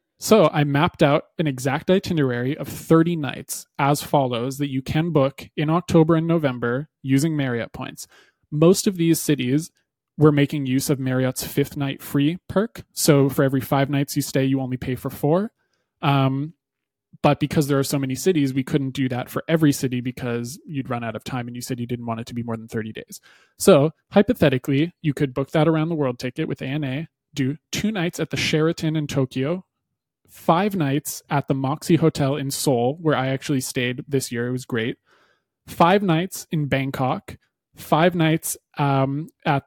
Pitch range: 135-165 Hz